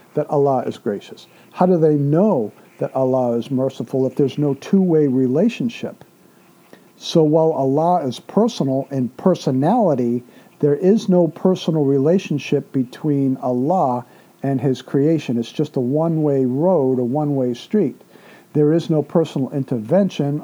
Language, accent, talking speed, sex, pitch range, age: English, American, 140 wpm, male, 130-165 Hz, 50-69